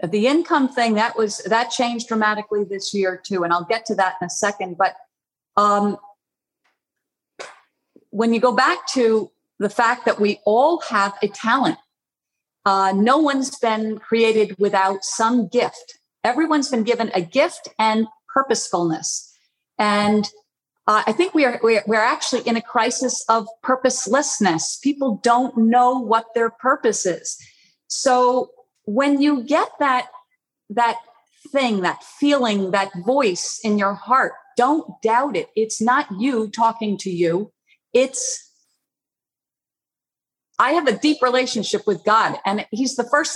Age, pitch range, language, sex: 50-69, 210-255 Hz, English, female